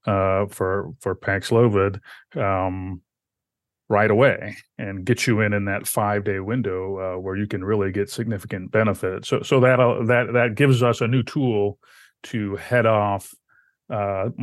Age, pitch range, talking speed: 30-49, 100-115 Hz, 160 wpm